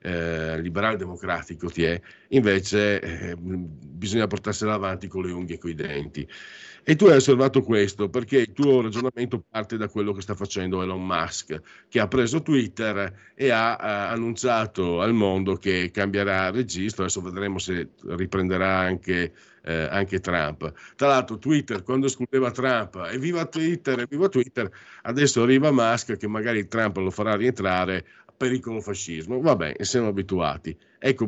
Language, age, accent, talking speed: Italian, 50-69, native, 155 wpm